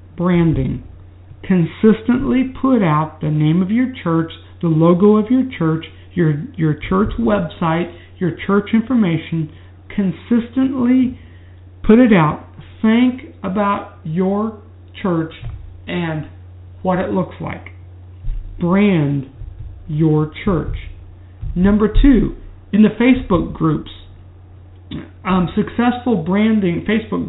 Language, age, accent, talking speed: English, 60-79, American, 105 wpm